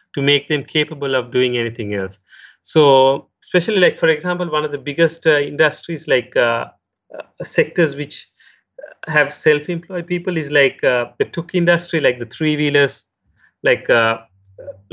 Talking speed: 160 wpm